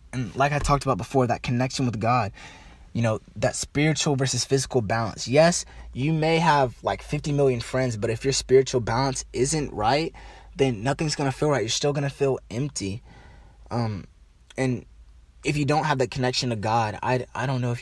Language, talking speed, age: English, 195 wpm, 20-39